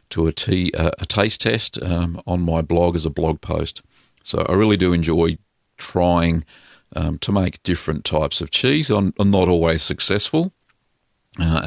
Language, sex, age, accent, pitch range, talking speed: English, male, 50-69, Australian, 80-105 Hz, 175 wpm